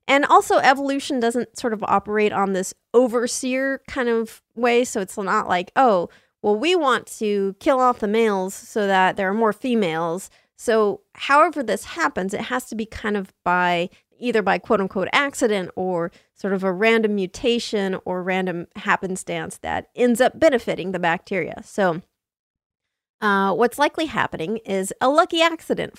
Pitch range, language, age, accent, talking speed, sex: 195-245 Hz, English, 30-49, American, 165 wpm, female